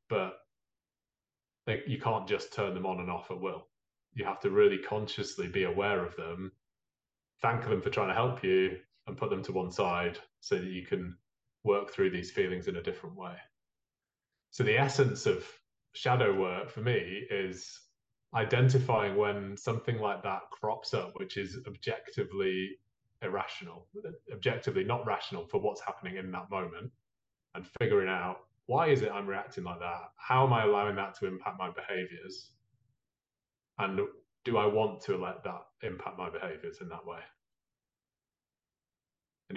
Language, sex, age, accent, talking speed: English, male, 20-39, British, 160 wpm